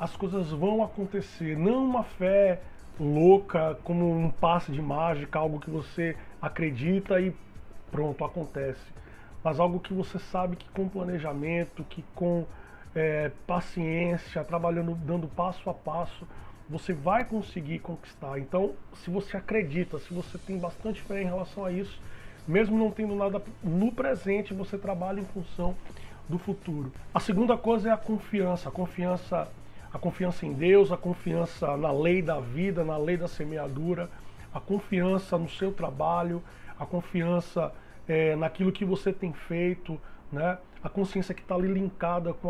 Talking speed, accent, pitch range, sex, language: 150 wpm, Brazilian, 160-195 Hz, male, Portuguese